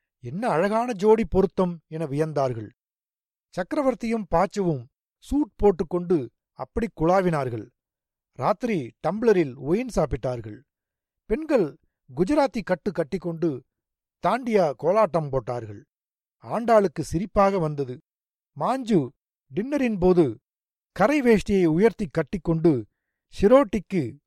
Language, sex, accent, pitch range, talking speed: Tamil, male, native, 145-210 Hz, 85 wpm